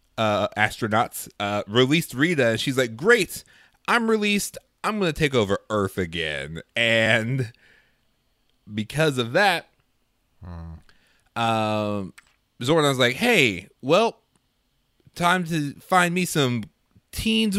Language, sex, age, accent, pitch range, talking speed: English, male, 30-49, American, 100-150 Hz, 110 wpm